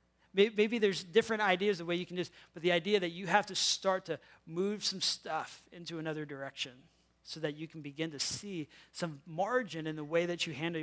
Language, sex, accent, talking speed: English, male, American, 215 wpm